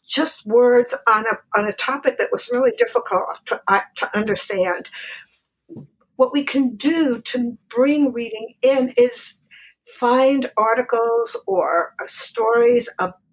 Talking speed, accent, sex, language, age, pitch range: 130 wpm, American, female, English, 60-79, 215-270 Hz